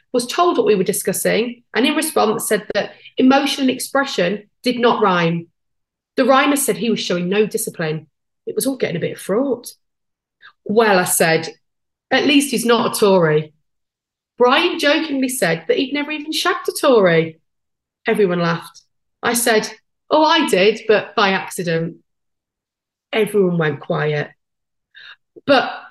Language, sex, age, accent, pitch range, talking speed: English, female, 30-49, British, 185-280 Hz, 150 wpm